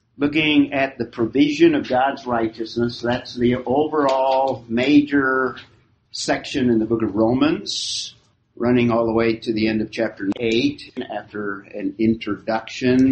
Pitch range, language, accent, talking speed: 110-130 Hz, English, American, 135 wpm